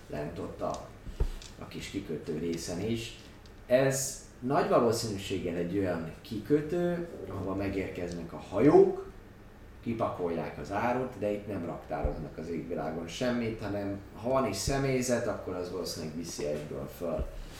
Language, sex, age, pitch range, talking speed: Hungarian, male, 30-49, 85-105 Hz, 135 wpm